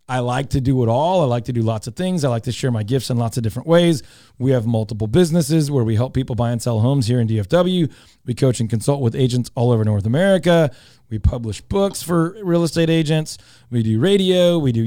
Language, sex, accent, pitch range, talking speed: English, male, American, 115-135 Hz, 245 wpm